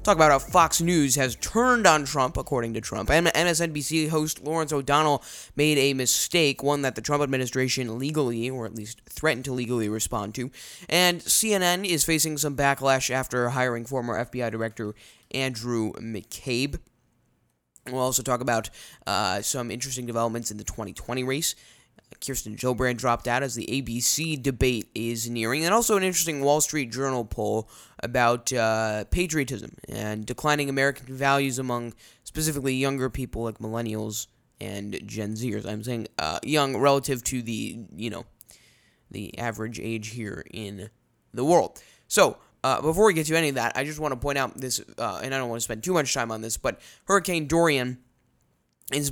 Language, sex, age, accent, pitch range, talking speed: English, male, 20-39, American, 115-145 Hz, 170 wpm